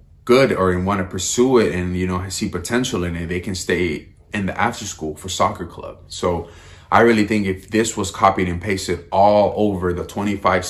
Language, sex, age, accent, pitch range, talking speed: English, male, 20-39, American, 90-110 Hz, 215 wpm